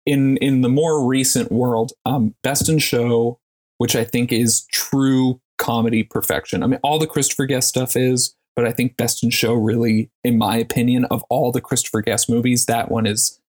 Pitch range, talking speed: 115-135 Hz, 195 wpm